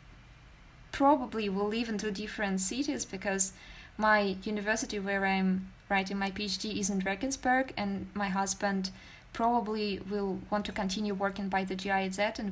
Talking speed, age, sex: 150 wpm, 20-39, female